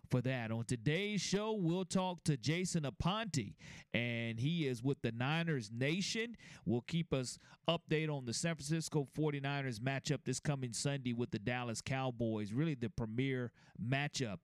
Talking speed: 160 wpm